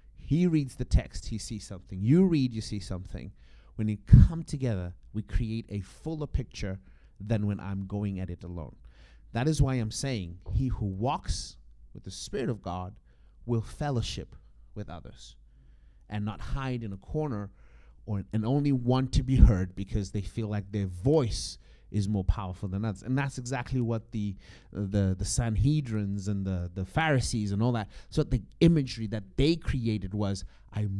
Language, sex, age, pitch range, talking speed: English, male, 30-49, 90-120 Hz, 180 wpm